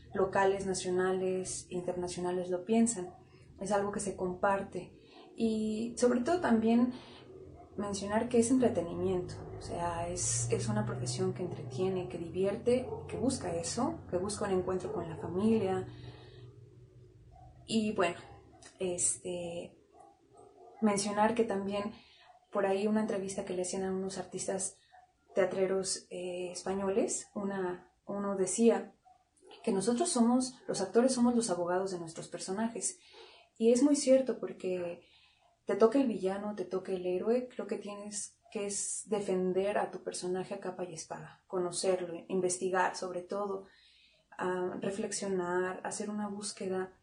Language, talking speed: Spanish, 135 wpm